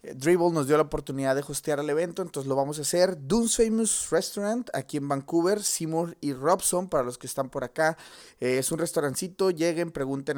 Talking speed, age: 195 wpm, 30-49